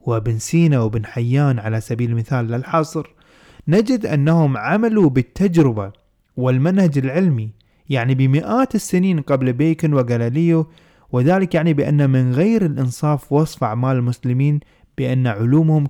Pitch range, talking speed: 120-160 Hz, 115 wpm